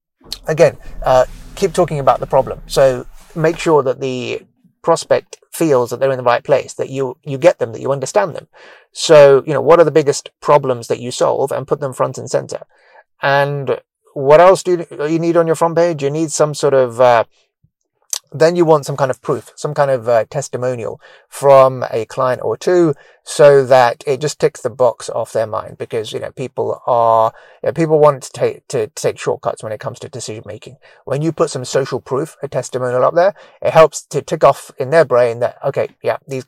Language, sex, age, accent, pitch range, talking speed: English, male, 30-49, British, 125-165 Hz, 215 wpm